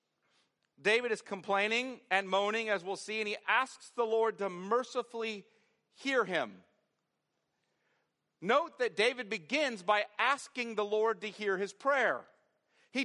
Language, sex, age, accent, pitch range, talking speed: English, male, 50-69, American, 200-255 Hz, 140 wpm